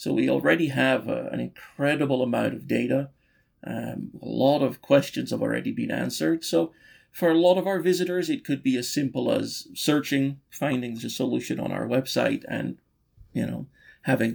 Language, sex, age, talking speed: English, male, 30-49, 180 wpm